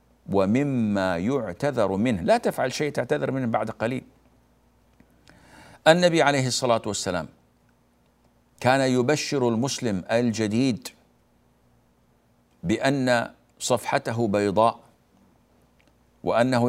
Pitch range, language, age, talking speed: 100-125 Hz, Arabic, 60-79, 80 wpm